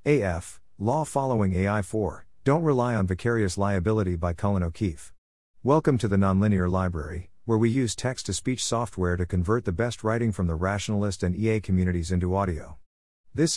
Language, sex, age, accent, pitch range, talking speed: English, male, 50-69, American, 90-115 Hz, 170 wpm